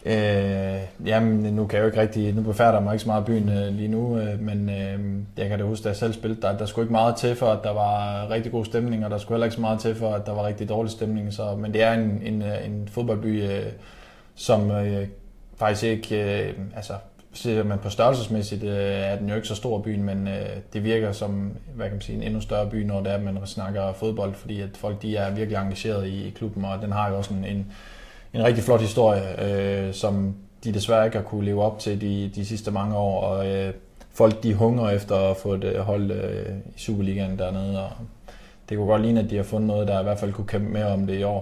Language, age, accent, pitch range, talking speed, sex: Danish, 20-39, native, 100-110 Hz, 250 wpm, male